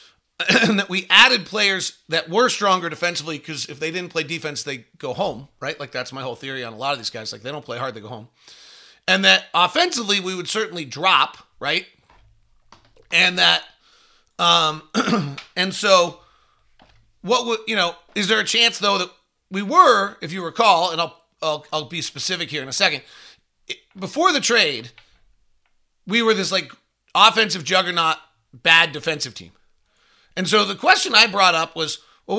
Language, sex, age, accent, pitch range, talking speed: English, male, 30-49, American, 155-205 Hz, 180 wpm